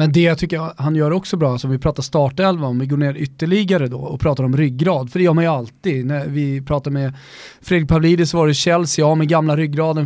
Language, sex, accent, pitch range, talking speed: Swedish, male, native, 140-175 Hz, 250 wpm